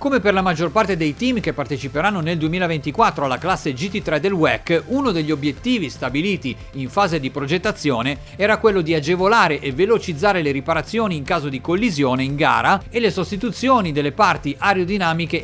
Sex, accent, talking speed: male, native, 170 wpm